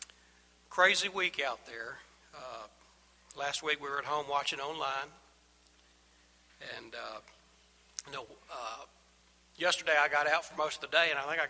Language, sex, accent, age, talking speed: English, male, American, 60-79, 155 wpm